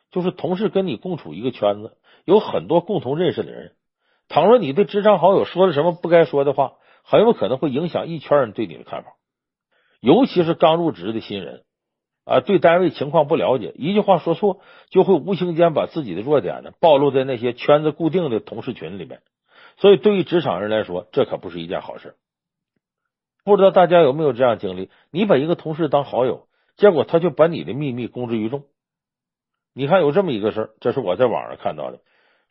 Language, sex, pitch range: Chinese, male, 140-190 Hz